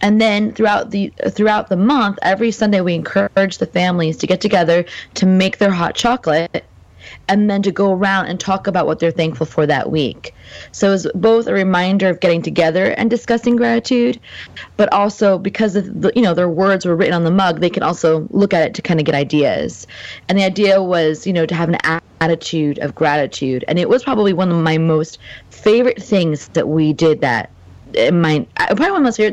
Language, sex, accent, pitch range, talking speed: English, female, American, 160-200 Hz, 210 wpm